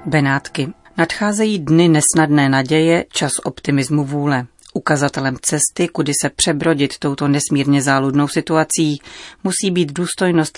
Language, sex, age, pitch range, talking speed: Czech, female, 30-49, 145-165 Hz, 115 wpm